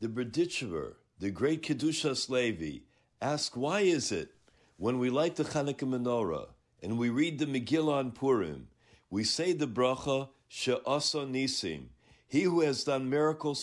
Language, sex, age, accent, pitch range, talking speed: English, male, 60-79, American, 115-150 Hz, 150 wpm